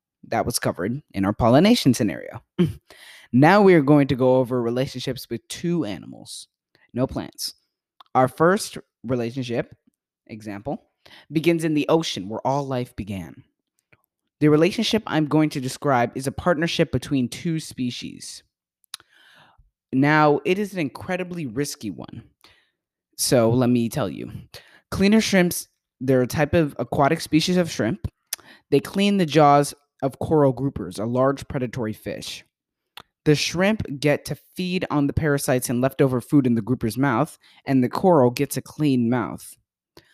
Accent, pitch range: American, 125-160 Hz